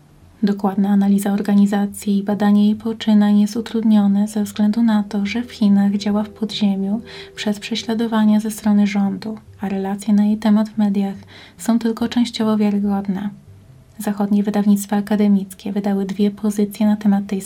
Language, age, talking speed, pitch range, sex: Polish, 20-39, 150 wpm, 200-215 Hz, female